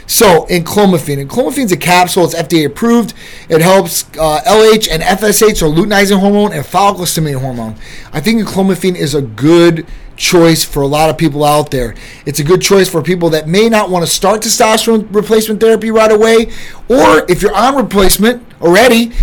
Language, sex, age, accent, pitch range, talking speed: English, male, 30-49, American, 155-205 Hz, 180 wpm